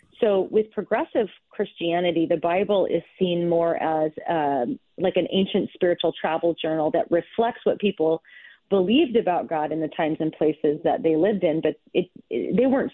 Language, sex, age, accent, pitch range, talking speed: English, female, 30-49, American, 165-200 Hz, 165 wpm